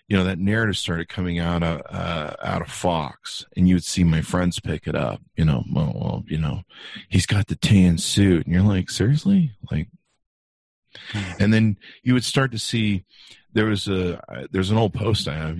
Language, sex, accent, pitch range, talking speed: English, male, American, 85-105 Hz, 205 wpm